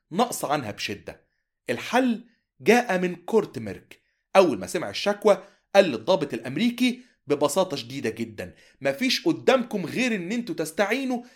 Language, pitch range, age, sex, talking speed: Arabic, 140-230 Hz, 30-49, male, 125 wpm